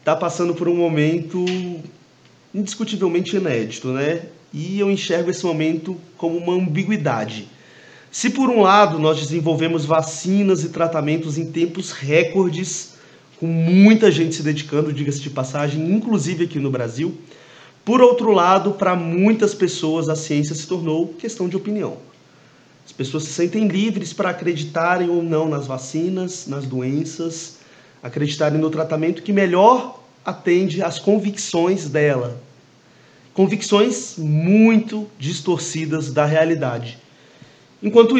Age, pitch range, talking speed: 30-49, 150-190 Hz, 125 wpm